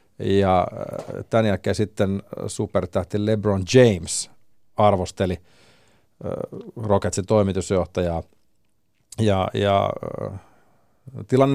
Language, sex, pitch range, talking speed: Finnish, male, 95-110 Hz, 70 wpm